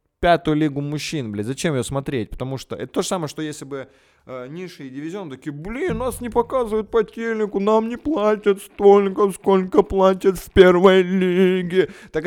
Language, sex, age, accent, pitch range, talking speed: Russian, male, 20-39, native, 125-170 Hz, 175 wpm